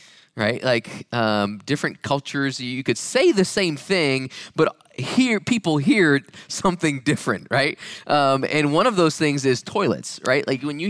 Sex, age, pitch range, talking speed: male, 20-39, 120-155 Hz, 165 wpm